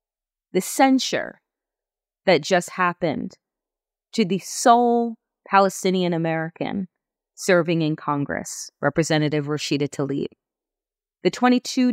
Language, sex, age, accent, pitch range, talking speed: English, female, 30-49, American, 175-240 Hz, 90 wpm